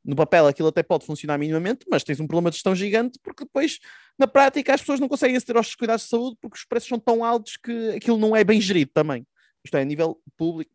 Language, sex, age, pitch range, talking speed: Portuguese, male, 20-39, 140-190 Hz, 250 wpm